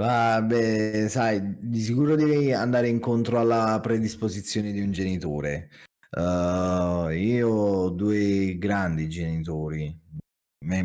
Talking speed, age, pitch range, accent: 105 wpm, 30-49, 90-115 Hz, native